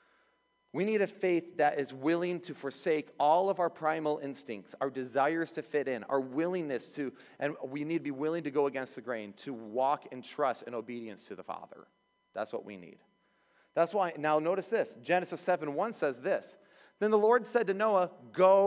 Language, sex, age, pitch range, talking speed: English, male, 30-49, 115-175 Hz, 200 wpm